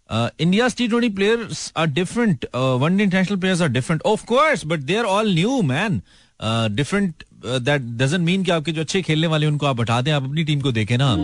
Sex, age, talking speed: male, 30-49, 200 wpm